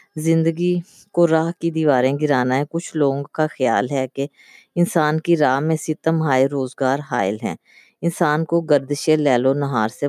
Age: 20-39